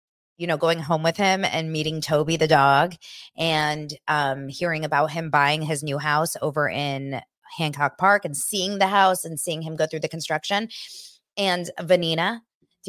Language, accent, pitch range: English, American, 150-185 Hz